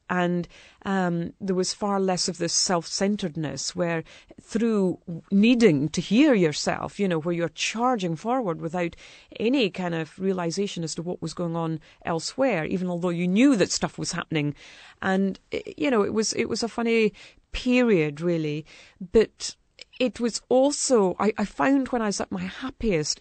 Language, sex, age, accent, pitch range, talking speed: English, female, 40-59, British, 170-210 Hz, 170 wpm